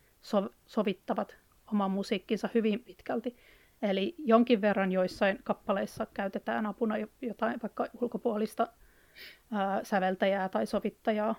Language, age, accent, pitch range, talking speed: Finnish, 30-49, native, 200-235 Hz, 100 wpm